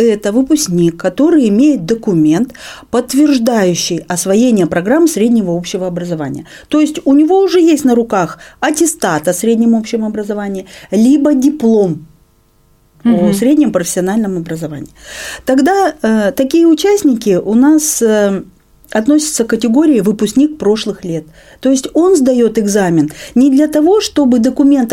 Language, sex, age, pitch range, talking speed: Russian, female, 40-59, 185-270 Hz, 130 wpm